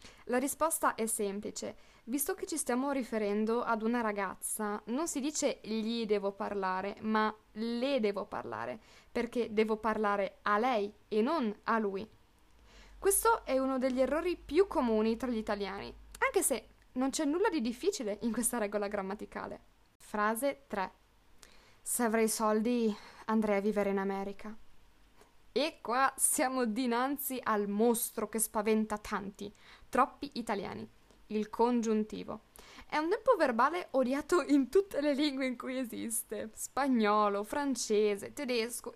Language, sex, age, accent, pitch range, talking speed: Italian, female, 20-39, native, 215-265 Hz, 140 wpm